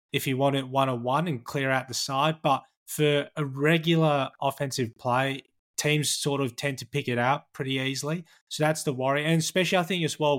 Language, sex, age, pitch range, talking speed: English, male, 20-39, 130-150 Hz, 215 wpm